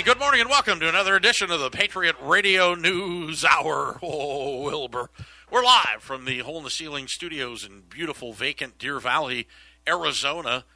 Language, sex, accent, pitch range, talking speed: English, male, American, 125-155 Hz, 150 wpm